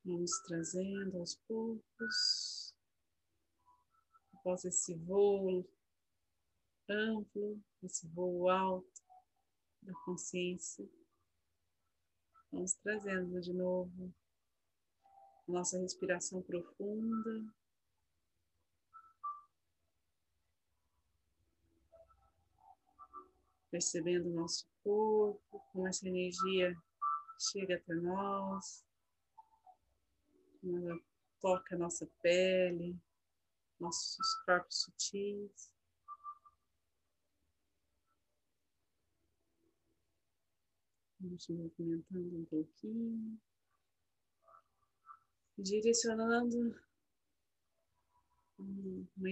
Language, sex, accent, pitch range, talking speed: Portuguese, female, Brazilian, 165-225 Hz, 55 wpm